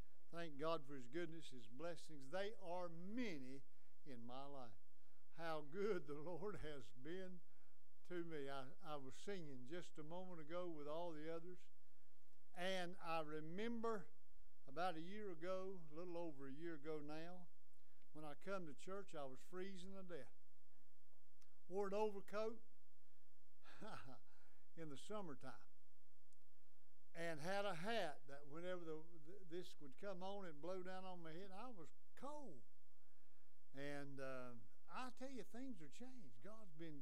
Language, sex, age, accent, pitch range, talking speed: English, male, 60-79, American, 135-190 Hz, 150 wpm